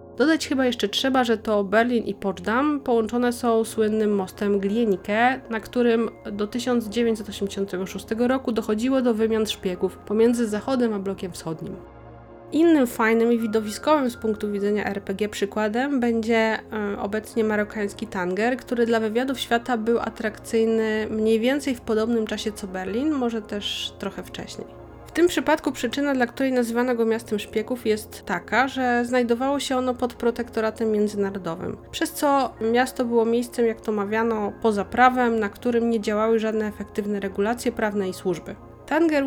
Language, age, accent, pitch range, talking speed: Polish, 30-49, native, 210-245 Hz, 150 wpm